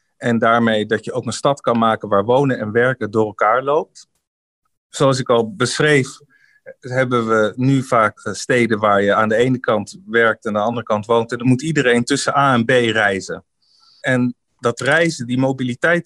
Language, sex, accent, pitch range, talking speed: Dutch, male, Dutch, 115-135 Hz, 195 wpm